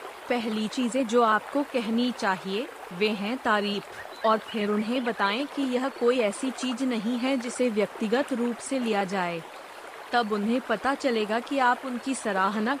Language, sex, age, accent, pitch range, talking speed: Hindi, female, 30-49, native, 210-250 Hz, 160 wpm